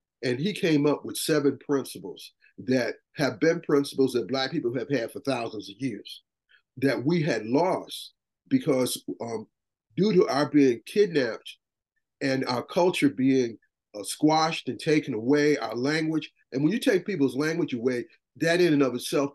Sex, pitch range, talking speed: male, 130-160 Hz, 165 wpm